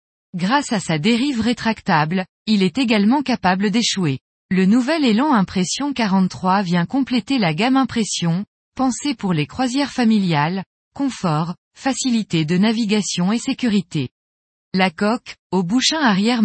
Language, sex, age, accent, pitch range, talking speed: French, female, 20-39, French, 180-245 Hz, 130 wpm